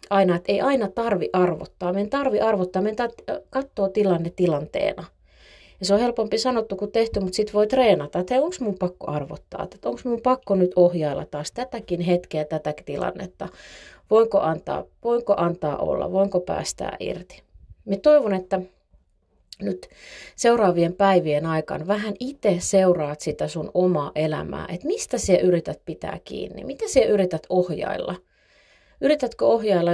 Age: 30-49